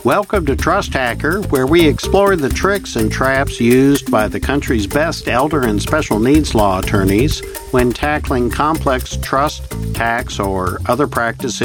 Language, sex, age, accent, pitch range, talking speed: English, male, 60-79, American, 110-145 Hz, 155 wpm